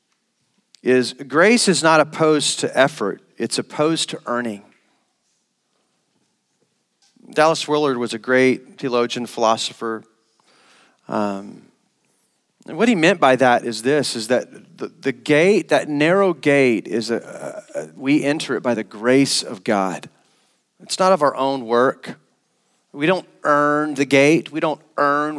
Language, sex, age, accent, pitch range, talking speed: English, male, 40-59, American, 135-185 Hz, 145 wpm